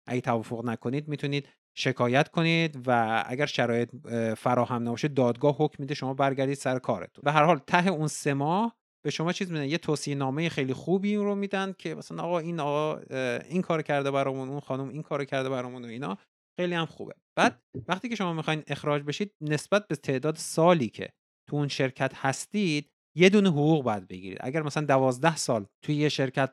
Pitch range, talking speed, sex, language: 120-150 Hz, 190 wpm, male, Persian